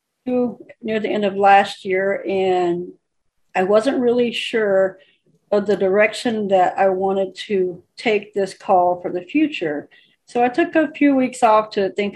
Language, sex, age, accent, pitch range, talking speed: English, female, 50-69, American, 190-235 Hz, 165 wpm